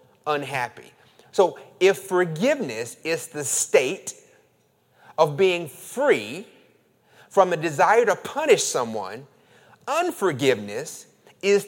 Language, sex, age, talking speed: English, male, 30-49, 90 wpm